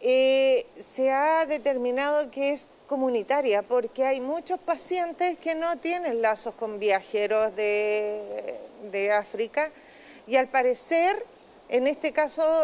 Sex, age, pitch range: female, 40-59, 235-310 Hz